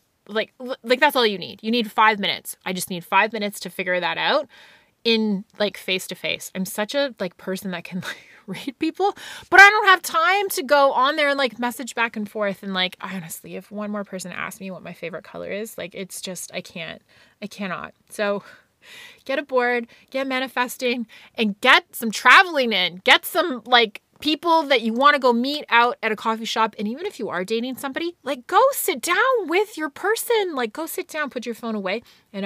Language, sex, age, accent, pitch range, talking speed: English, female, 20-39, American, 190-275 Hz, 220 wpm